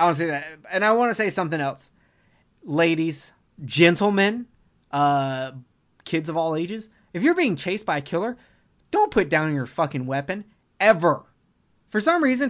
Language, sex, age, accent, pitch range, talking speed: English, male, 20-39, American, 150-210 Hz, 165 wpm